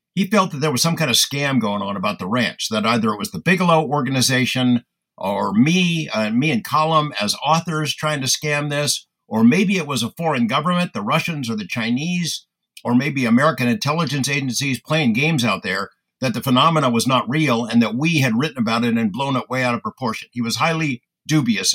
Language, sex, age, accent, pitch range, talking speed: English, male, 60-79, American, 125-170 Hz, 215 wpm